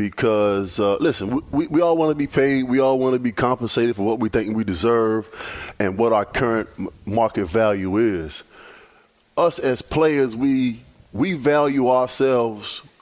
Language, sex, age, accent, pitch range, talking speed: English, male, 30-49, American, 110-150 Hz, 165 wpm